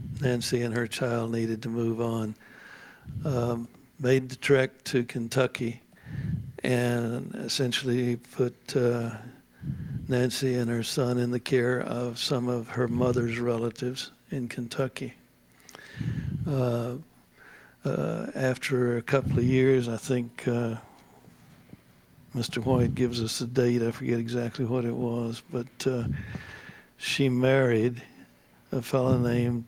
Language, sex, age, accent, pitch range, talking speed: English, male, 60-79, American, 120-130 Hz, 125 wpm